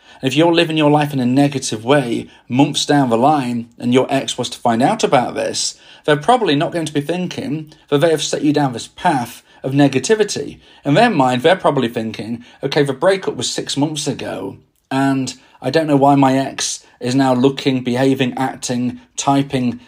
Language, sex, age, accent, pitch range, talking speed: English, male, 40-59, British, 130-160 Hz, 195 wpm